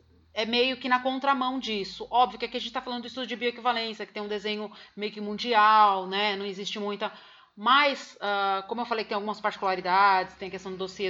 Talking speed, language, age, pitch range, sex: 220 wpm, Portuguese, 30-49, 195-240 Hz, female